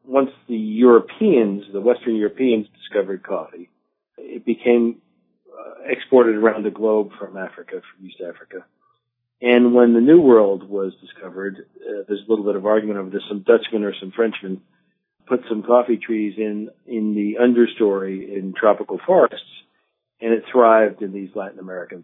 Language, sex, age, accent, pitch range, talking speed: English, male, 50-69, American, 105-125 Hz, 160 wpm